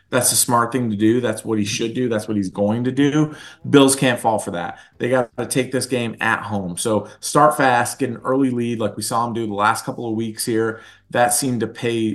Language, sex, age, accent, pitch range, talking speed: English, male, 30-49, American, 105-125 Hz, 255 wpm